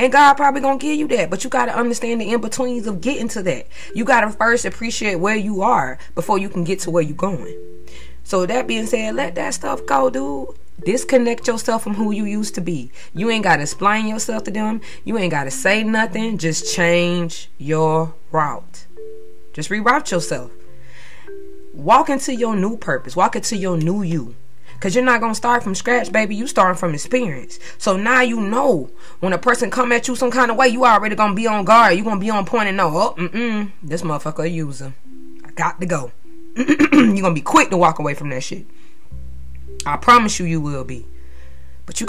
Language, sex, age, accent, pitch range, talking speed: English, female, 20-39, American, 160-230 Hz, 215 wpm